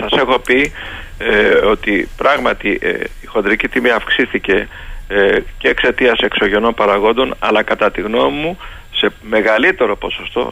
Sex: male